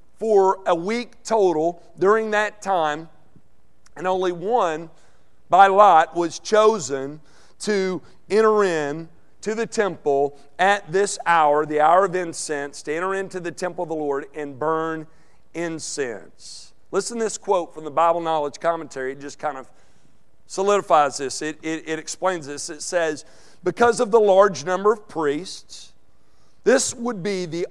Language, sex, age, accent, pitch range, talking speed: English, male, 50-69, American, 145-205 Hz, 155 wpm